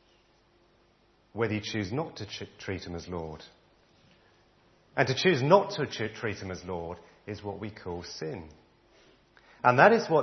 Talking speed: 160 wpm